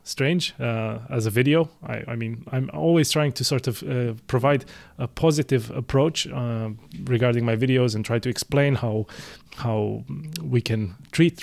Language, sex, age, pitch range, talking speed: English, male, 30-49, 115-150 Hz, 170 wpm